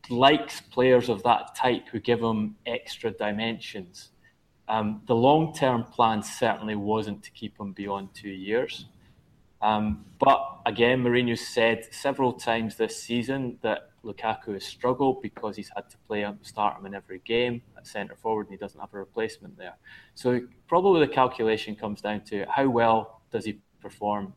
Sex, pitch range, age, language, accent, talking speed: male, 100-115 Hz, 20-39, English, British, 165 wpm